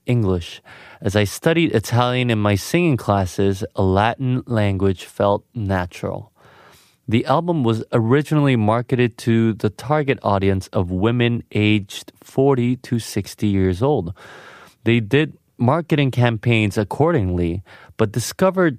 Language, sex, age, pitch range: Korean, male, 20-39, 105-140 Hz